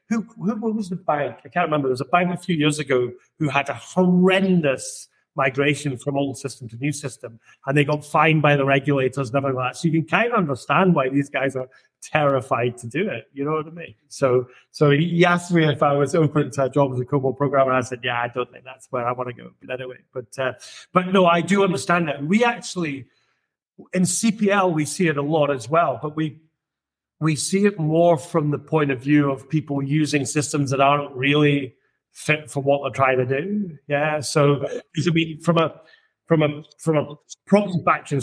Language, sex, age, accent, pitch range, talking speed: English, male, 30-49, British, 135-160 Hz, 225 wpm